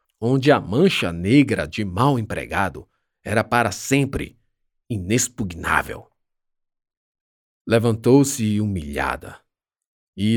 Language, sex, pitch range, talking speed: Portuguese, male, 95-135 Hz, 80 wpm